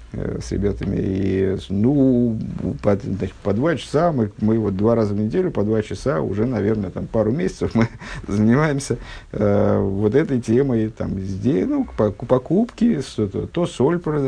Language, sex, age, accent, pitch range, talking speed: Russian, male, 50-69, native, 100-125 Hz, 145 wpm